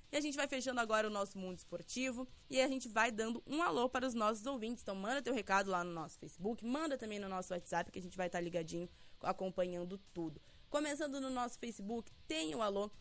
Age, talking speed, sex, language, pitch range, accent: 20-39, 225 wpm, female, Portuguese, 205-265 Hz, Brazilian